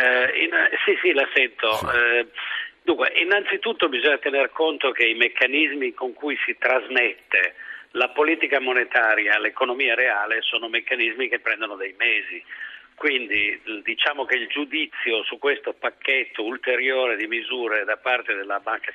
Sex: male